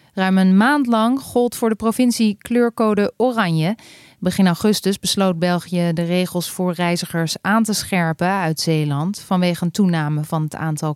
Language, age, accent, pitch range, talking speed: Dutch, 30-49, Dutch, 175-235 Hz, 160 wpm